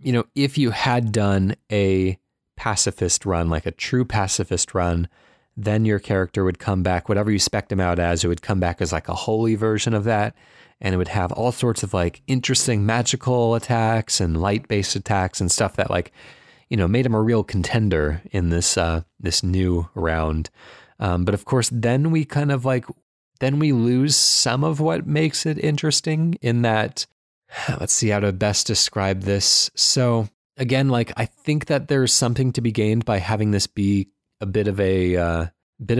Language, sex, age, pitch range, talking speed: English, male, 30-49, 95-125 Hz, 195 wpm